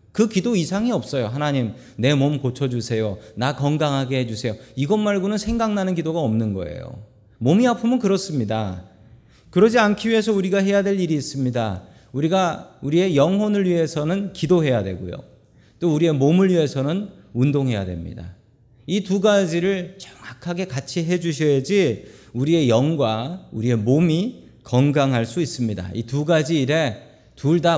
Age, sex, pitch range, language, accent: 40-59, male, 120-195 Hz, Korean, native